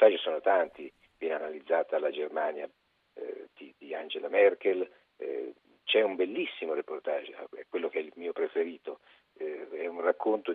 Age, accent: 50-69, native